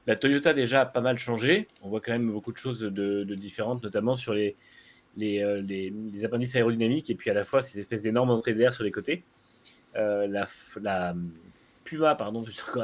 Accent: French